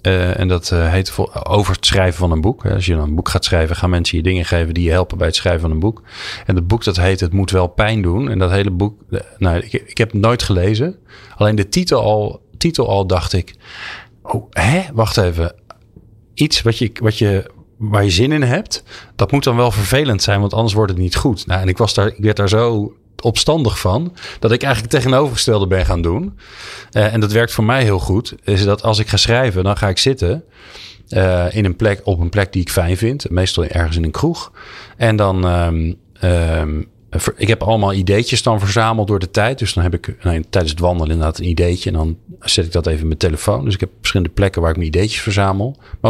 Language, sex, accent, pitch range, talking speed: Dutch, male, Dutch, 90-115 Hz, 235 wpm